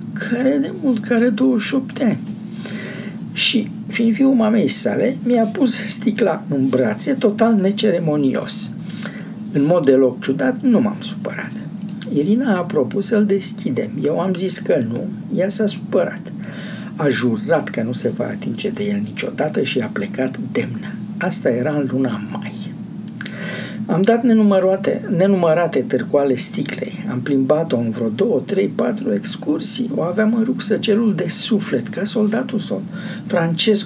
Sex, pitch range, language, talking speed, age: male, 165-220 Hz, Romanian, 145 wpm, 60-79